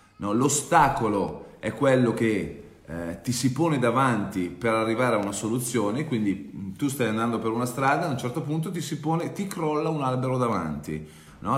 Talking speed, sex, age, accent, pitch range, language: 180 wpm, male, 40-59, native, 105-140 Hz, Italian